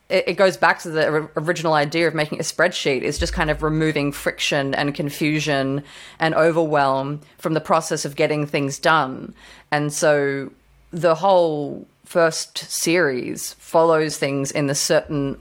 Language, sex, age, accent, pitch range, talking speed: English, female, 30-49, Australian, 150-180 Hz, 150 wpm